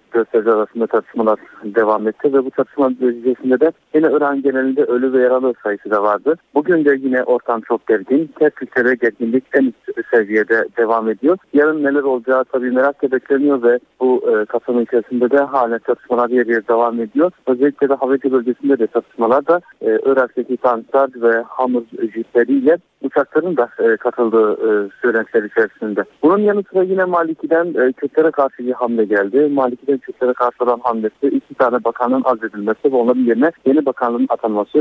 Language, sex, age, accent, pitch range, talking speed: Turkish, male, 50-69, native, 120-140 Hz, 165 wpm